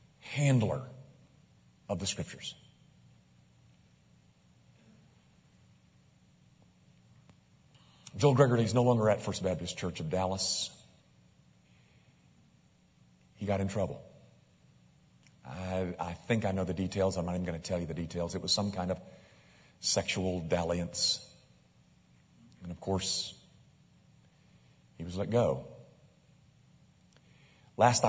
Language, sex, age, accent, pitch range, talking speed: English, male, 40-59, American, 85-115 Hz, 105 wpm